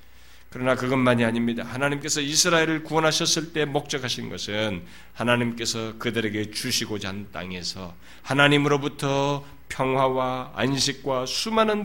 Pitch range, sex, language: 105-175 Hz, male, Korean